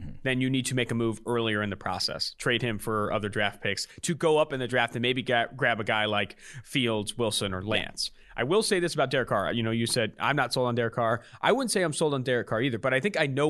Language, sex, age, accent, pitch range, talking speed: English, male, 30-49, American, 120-170 Hz, 285 wpm